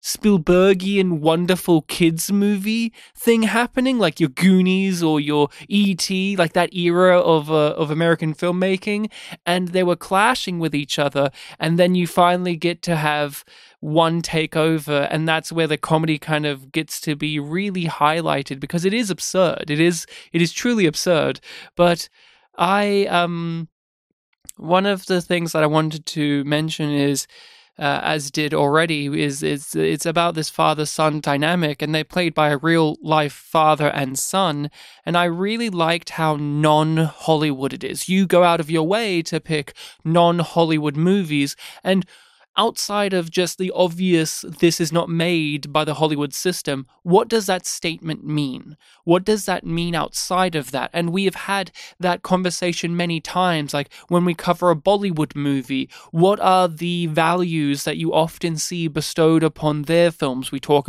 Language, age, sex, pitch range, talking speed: English, 20-39, male, 150-180 Hz, 165 wpm